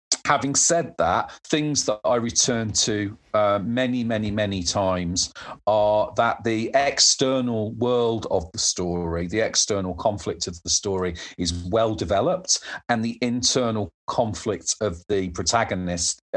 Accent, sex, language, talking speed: British, male, English, 135 wpm